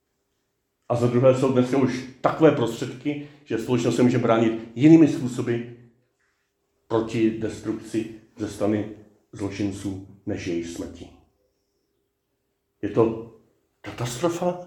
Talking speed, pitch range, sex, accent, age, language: 110 wpm, 115-145 Hz, male, native, 40-59, Czech